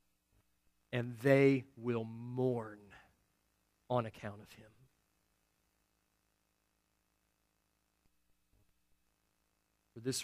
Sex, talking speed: male, 60 wpm